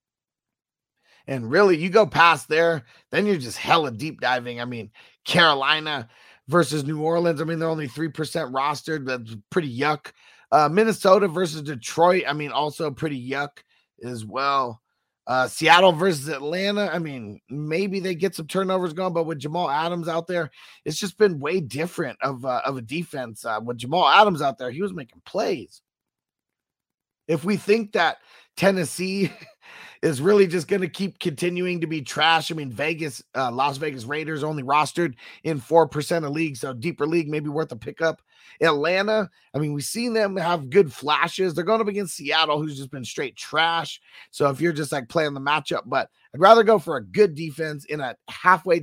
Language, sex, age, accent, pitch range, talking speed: English, male, 30-49, American, 140-180 Hz, 185 wpm